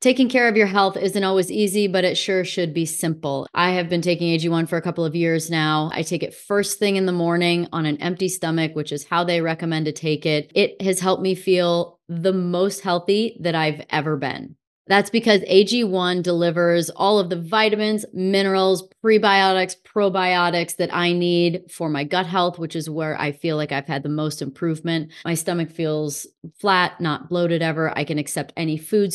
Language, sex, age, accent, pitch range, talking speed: English, female, 30-49, American, 165-200 Hz, 200 wpm